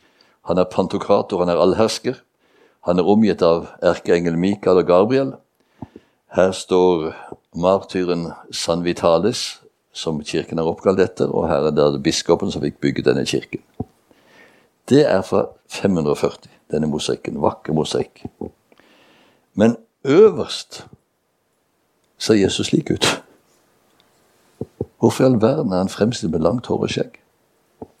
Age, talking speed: 60-79, 120 wpm